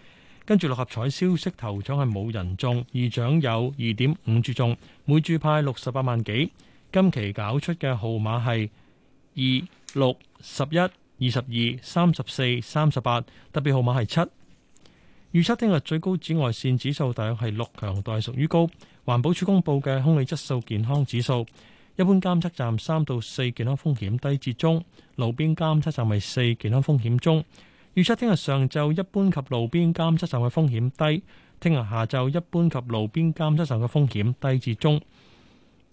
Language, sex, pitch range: Chinese, male, 120-155 Hz